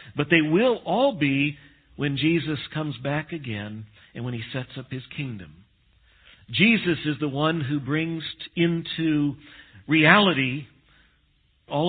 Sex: male